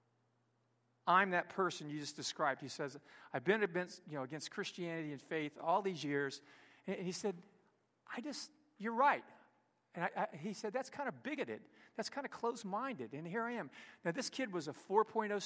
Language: English